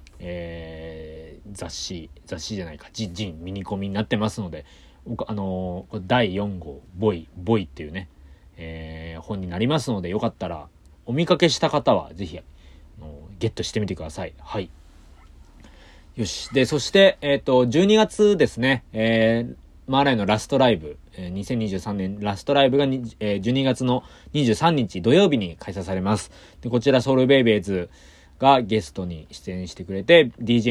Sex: male